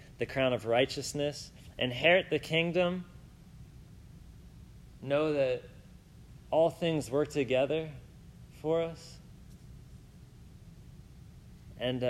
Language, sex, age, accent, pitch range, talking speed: English, male, 30-49, American, 125-185 Hz, 80 wpm